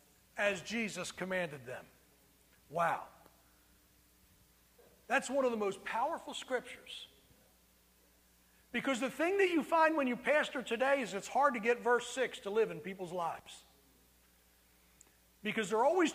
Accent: American